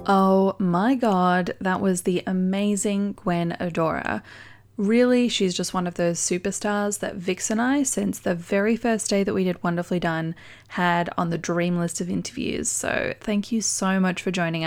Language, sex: English, female